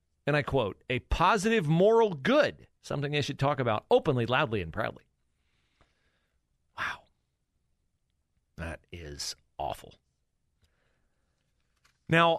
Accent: American